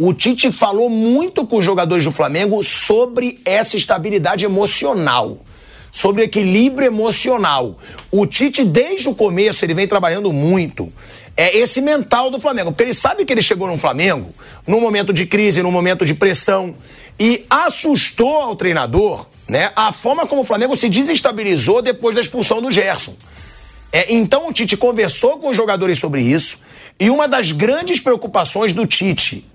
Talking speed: 165 wpm